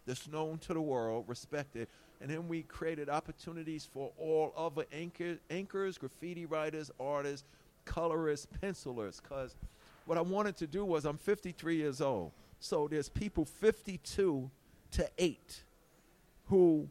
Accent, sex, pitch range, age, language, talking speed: American, male, 145-180 Hz, 50-69, English, 130 wpm